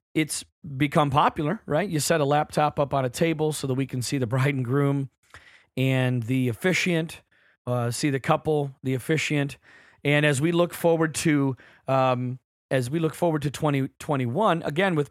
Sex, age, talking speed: male, 40-59, 175 wpm